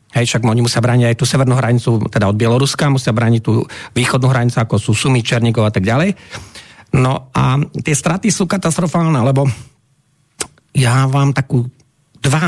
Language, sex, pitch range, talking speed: Slovak, male, 130-160 Hz, 170 wpm